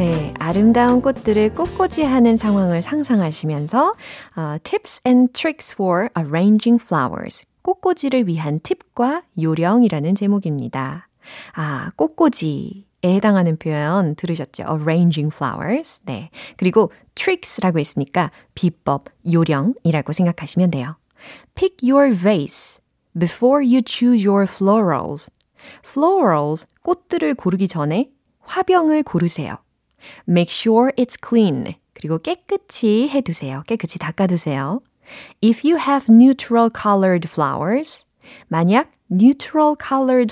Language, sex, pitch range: Korean, female, 170-265 Hz